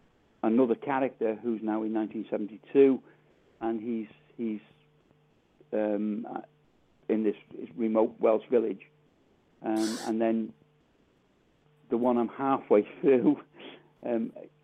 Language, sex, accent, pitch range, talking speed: English, male, British, 110-130 Hz, 100 wpm